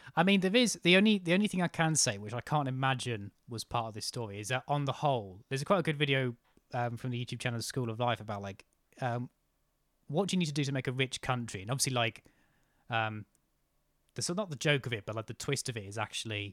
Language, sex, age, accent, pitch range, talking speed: English, male, 20-39, British, 110-140 Hz, 260 wpm